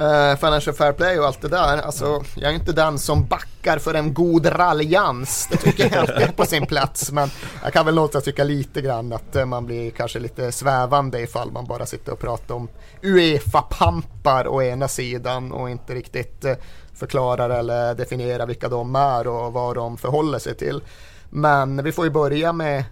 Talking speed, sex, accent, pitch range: 190 wpm, male, native, 115-145 Hz